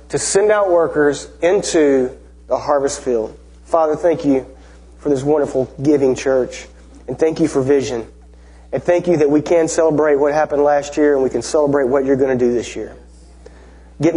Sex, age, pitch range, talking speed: male, 30-49, 125-210 Hz, 185 wpm